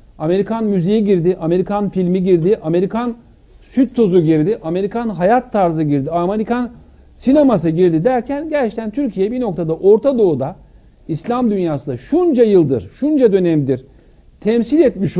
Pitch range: 155-225 Hz